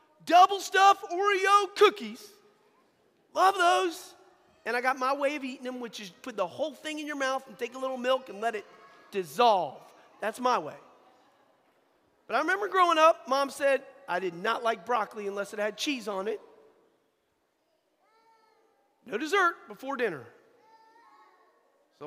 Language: English